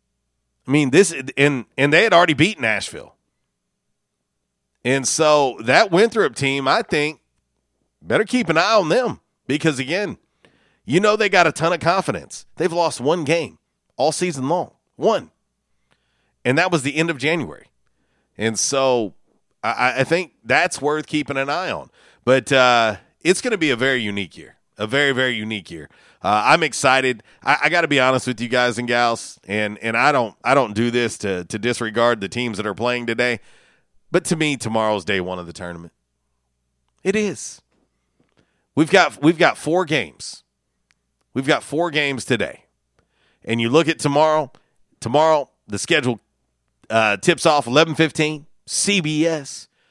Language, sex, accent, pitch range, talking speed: English, male, American, 110-155 Hz, 170 wpm